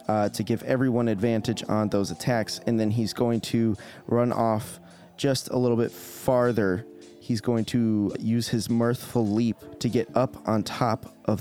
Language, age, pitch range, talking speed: English, 30-49, 100-120 Hz, 175 wpm